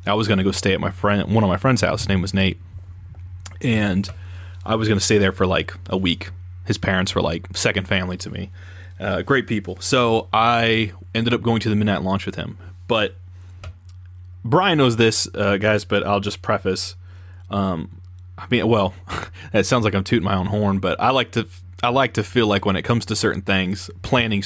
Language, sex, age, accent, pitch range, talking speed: English, male, 30-49, American, 90-110 Hz, 215 wpm